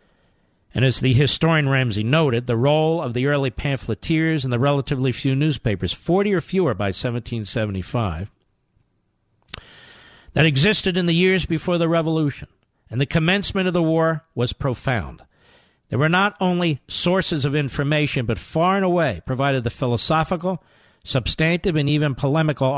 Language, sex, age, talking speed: English, male, 50-69, 150 wpm